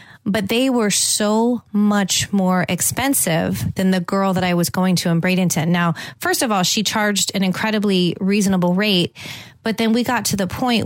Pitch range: 170-210 Hz